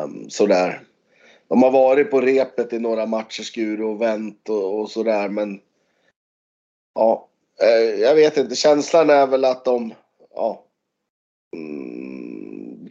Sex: male